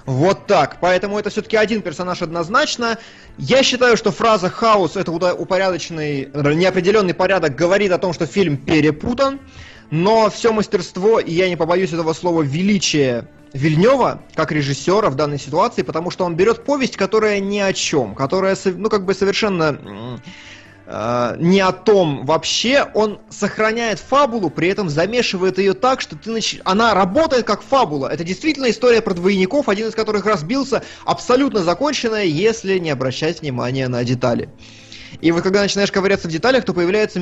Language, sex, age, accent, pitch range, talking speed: Russian, male, 20-39, native, 150-210 Hz, 160 wpm